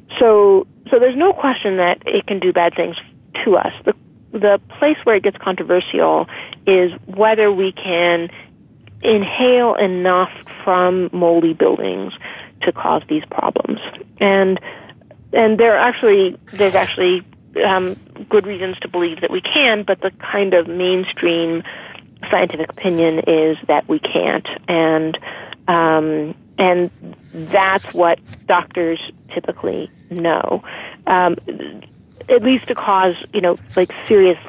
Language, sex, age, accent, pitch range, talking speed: English, female, 40-59, American, 170-205 Hz, 130 wpm